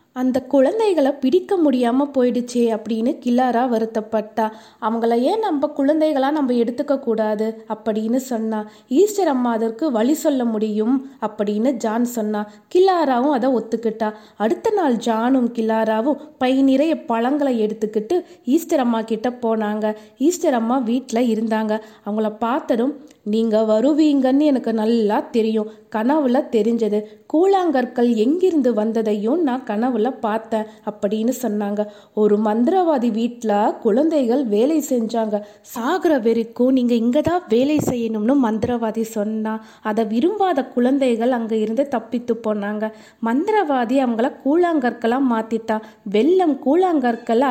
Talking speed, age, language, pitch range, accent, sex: 110 wpm, 20-39, Tamil, 220-275 Hz, native, female